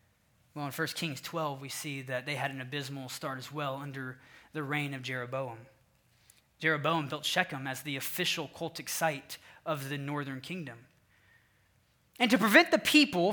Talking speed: 165 wpm